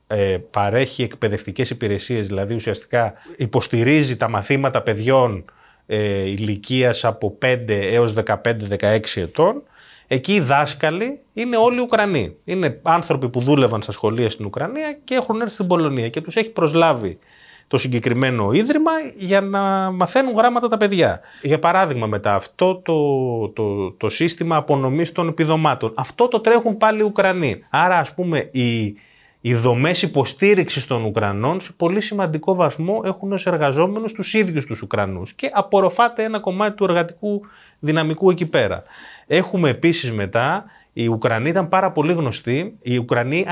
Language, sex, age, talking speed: Greek, male, 30-49, 150 wpm